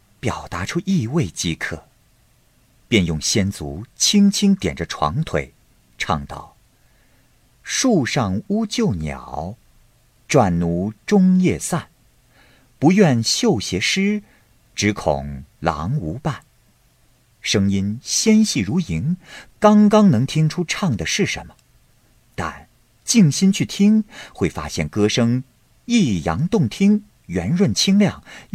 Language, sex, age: Chinese, male, 50-69